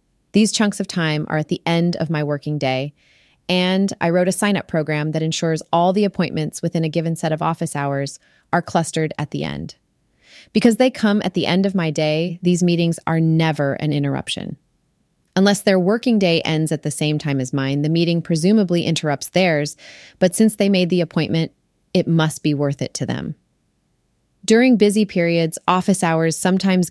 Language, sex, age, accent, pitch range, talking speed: English, female, 30-49, American, 155-185 Hz, 190 wpm